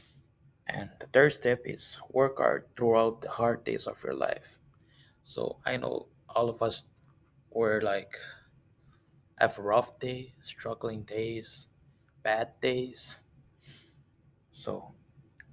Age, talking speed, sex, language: 20-39, 120 wpm, male, English